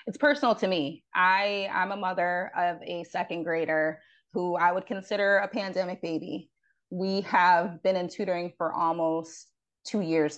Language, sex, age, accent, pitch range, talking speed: English, female, 20-39, American, 165-190 Hz, 160 wpm